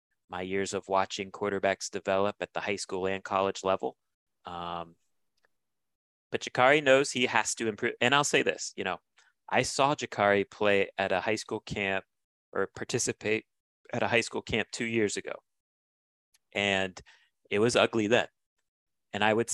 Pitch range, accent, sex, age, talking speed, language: 95-115 Hz, American, male, 30-49, 165 wpm, English